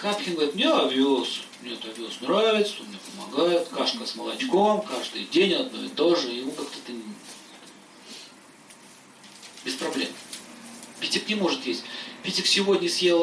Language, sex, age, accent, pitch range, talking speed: Russian, male, 40-59, native, 145-230 Hz, 140 wpm